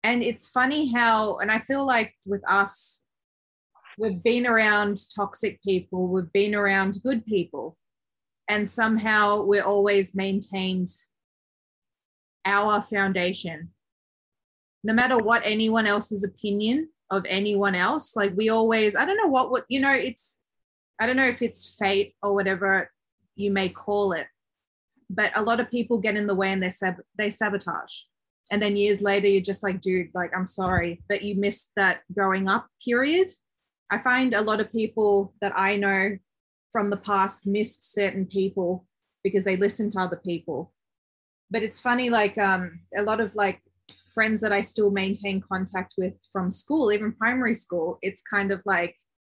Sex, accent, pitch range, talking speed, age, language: female, Australian, 190-220 Hz, 165 wpm, 20-39, English